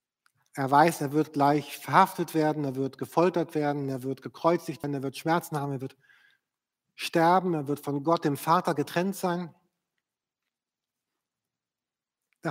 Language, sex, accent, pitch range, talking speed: German, male, German, 145-180 Hz, 150 wpm